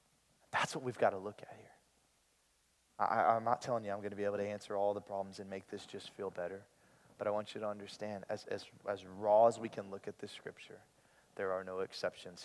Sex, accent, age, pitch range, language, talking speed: male, American, 30-49, 100-120 Hz, English, 235 wpm